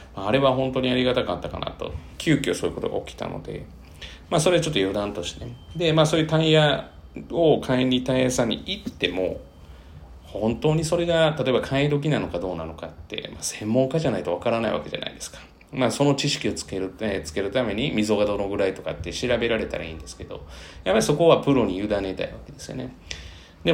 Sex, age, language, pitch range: male, 30-49, Japanese, 85-135 Hz